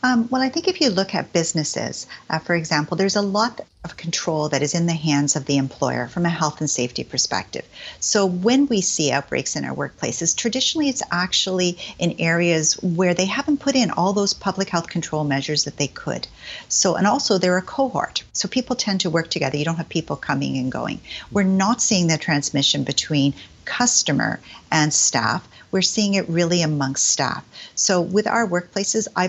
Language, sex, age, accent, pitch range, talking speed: English, female, 50-69, American, 155-200 Hz, 200 wpm